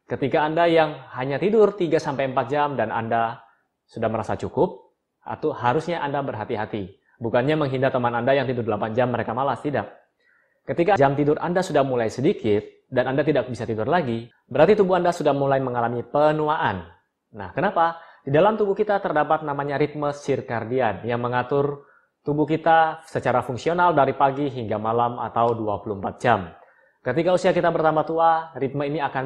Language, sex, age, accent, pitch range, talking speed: Indonesian, male, 20-39, native, 120-155 Hz, 160 wpm